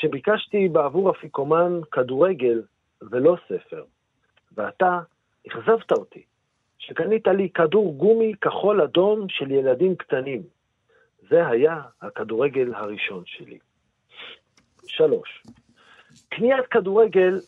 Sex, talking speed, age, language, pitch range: male, 90 wpm, 50-69, Hebrew, 150-225 Hz